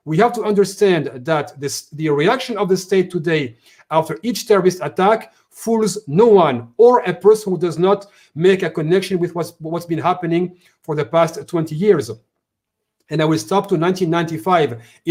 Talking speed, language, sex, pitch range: 175 wpm, Turkish, male, 160-205 Hz